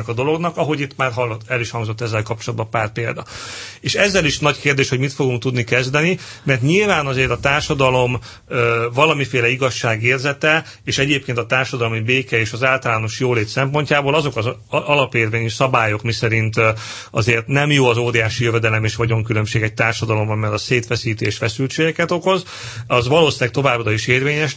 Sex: male